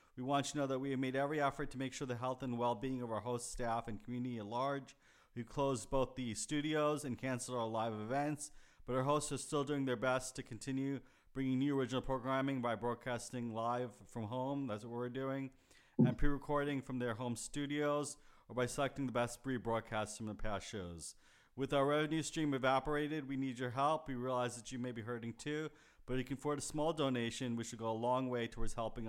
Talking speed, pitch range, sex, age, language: 225 wpm, 115-135 Hz, male, 30-49, English